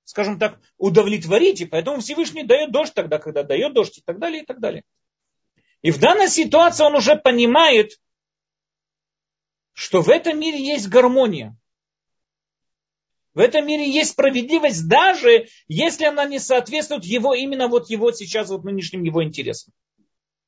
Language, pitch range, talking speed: Russian, 165-275 Hz, 145 wpm